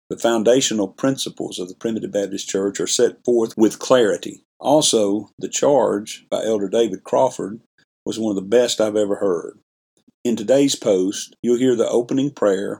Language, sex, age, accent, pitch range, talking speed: English, male, 50-69, American, 95-115 Hz, 170 wpm